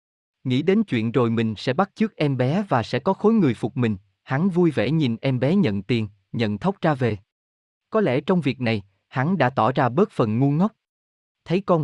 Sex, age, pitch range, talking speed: male, 20-39, 115-160 Hz, 225 wpm